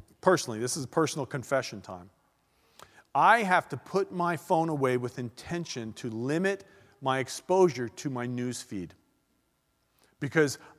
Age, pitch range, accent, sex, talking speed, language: 40-59, 125-175 Hz, American, male, 140 wpm, English